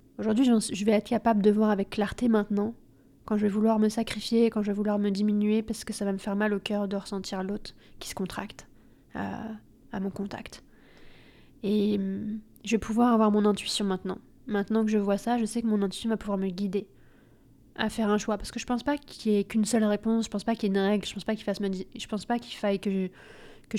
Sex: female